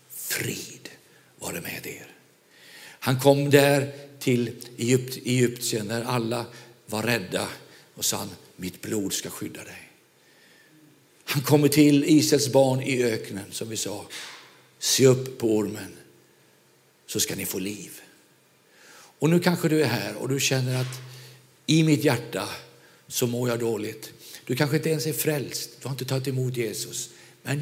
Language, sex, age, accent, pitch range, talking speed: Swedish, male, 50-69, native, 120-155 Hz, 155 wpm